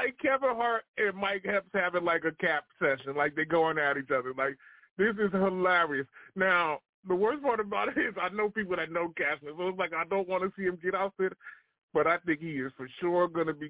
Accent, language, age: American, English, 20-39